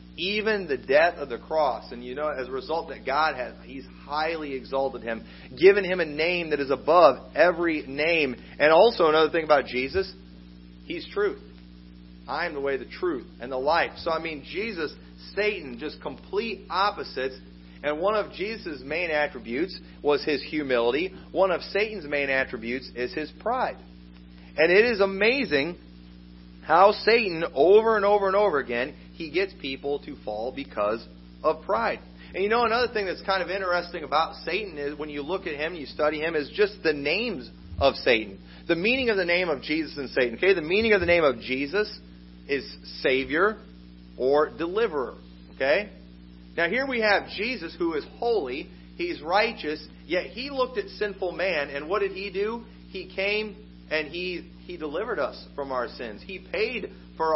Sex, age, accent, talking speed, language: male, 40-59, American, 180 wpm, English